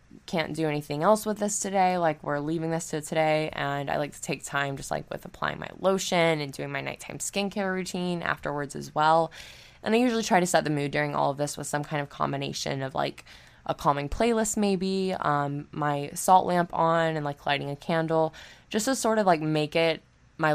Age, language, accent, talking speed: 10-29, English, American, 220 wpm